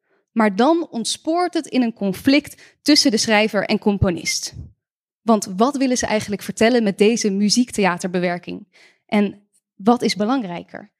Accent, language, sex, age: Dutch, Dutch, female, 10-29